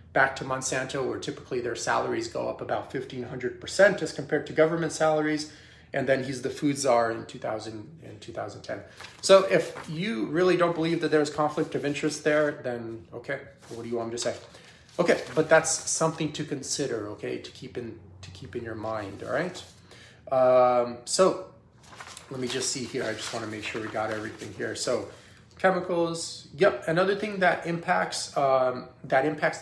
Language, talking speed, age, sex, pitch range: English, 185 wpm, 30-49, male, 120-155 Hz